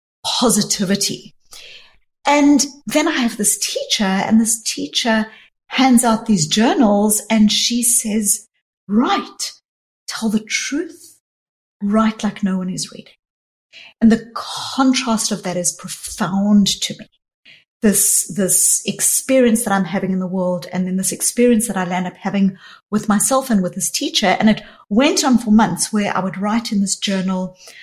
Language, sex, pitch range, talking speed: English, female, 195-240 Hz, 155 wpm